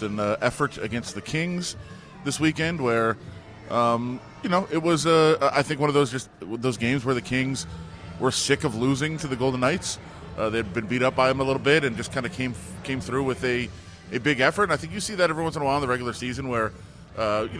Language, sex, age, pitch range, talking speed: English, male, 30-49, 100-130 Hz, 250 wpm